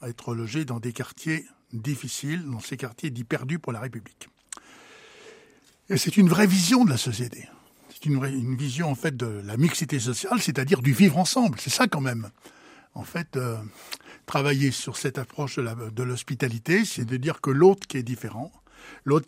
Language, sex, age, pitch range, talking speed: French, male, 60-79, 130-185 Hz, 195 wpm